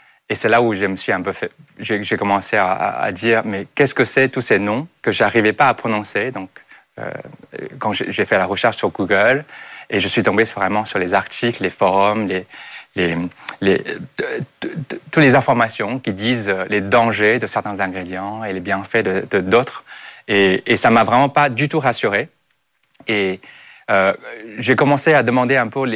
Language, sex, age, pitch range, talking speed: French, male, 30-49, 100-125 Hz, 175 wpm